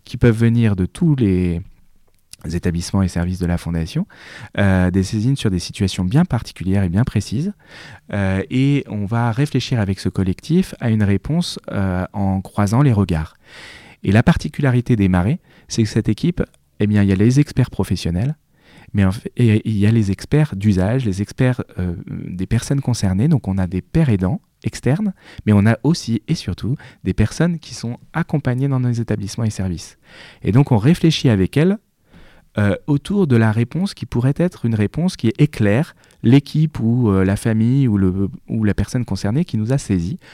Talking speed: 185 wpm